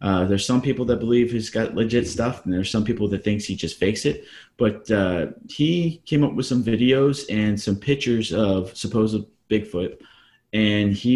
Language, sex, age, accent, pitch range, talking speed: English, male, 30-49, American, 95-125 Hz, 195 wpm